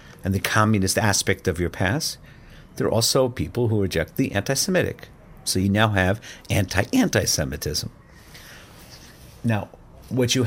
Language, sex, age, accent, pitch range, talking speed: English, male, 50-69, American, 95-120 Hz, 130 wpm